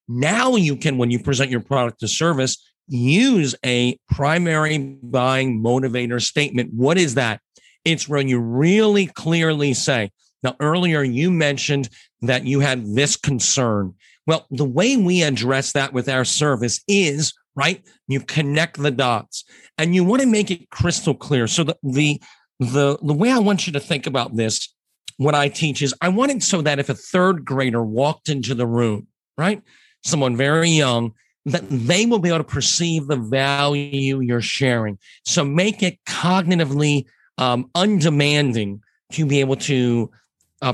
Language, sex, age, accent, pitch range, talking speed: English, male, 50-69, American, 125-165 Hz, 165 wpm